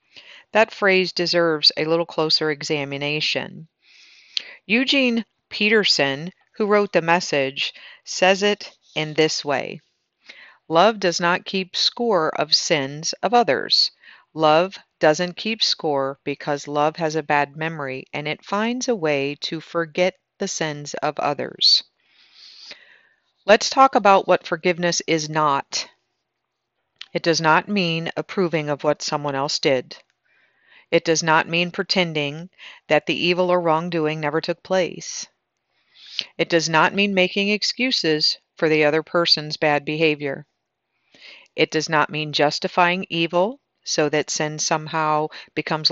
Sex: female